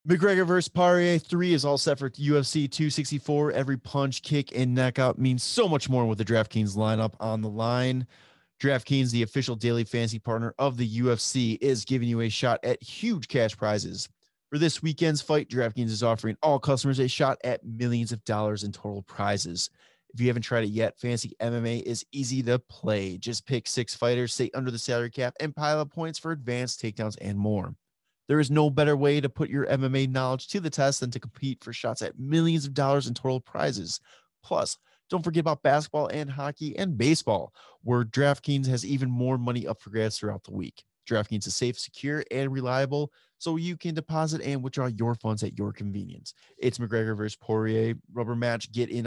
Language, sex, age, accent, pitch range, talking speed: English, male, 20-39, American, 115-145 Hz, 200 wpm